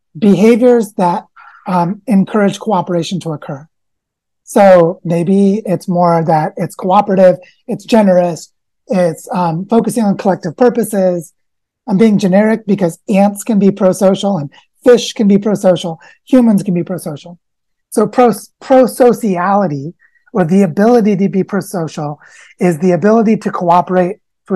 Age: 30-49